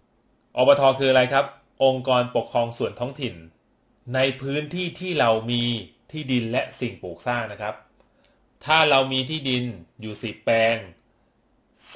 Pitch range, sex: 115-135 Hz, male